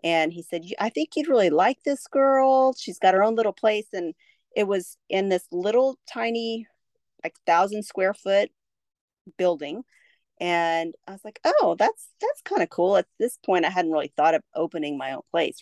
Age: 40-59